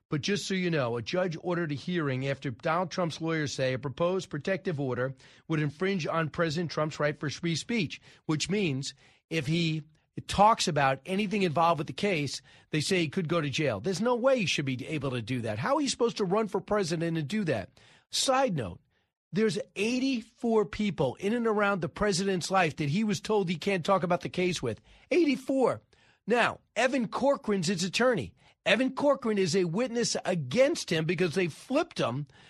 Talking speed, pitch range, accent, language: 200 wpm, 155-210 Hz, American, English